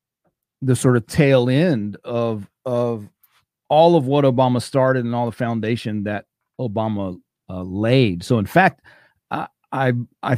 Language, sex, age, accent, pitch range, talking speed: English, male, 40-59, American, 100-120 Hz, 145 wpm